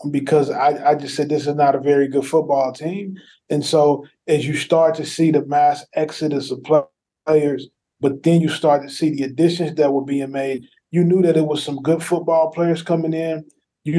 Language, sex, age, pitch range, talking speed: English, male, 20-39, 140-160 Hz, 210 wpm